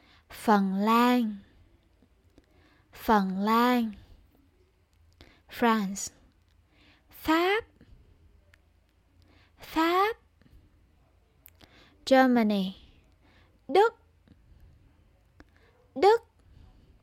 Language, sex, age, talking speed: Vietnamese, female, 20-39, 35 wpm